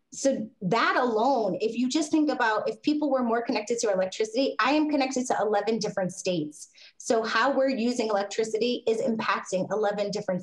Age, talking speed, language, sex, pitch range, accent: 20-39, 180 wpm, English, female, 185-240 Hz, American